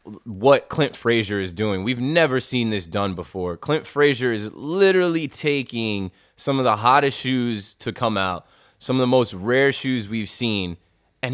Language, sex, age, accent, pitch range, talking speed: English, male, 20-39, American, 100-130 Hz, 175 wpm